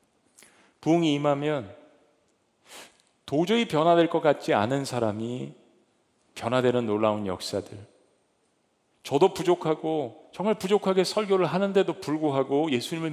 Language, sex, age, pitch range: Korean, male, 40-59, 125-160 Hz